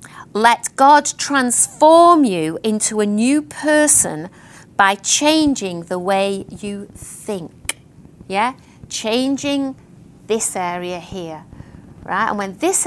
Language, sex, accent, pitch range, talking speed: English, female, British, 195-305 Hz, 105 wpm